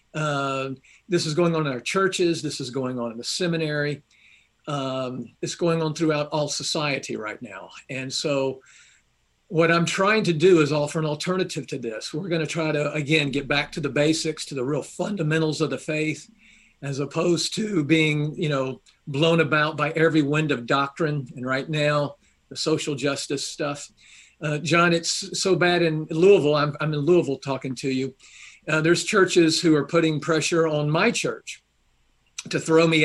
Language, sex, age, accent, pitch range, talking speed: English, male, 50-69, American, 140-165 Hz, 185 wpm